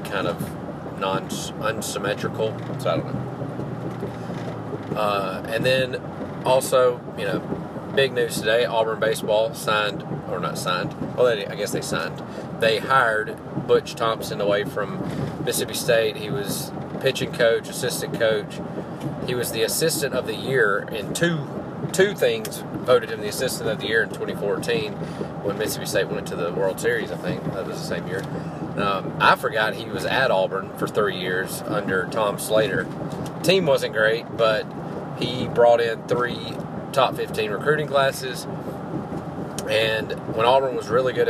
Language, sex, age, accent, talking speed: English, male, 40-59, American, 155 wpm